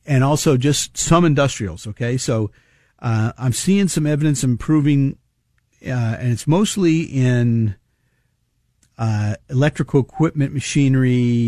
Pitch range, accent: 120-150 Hz, American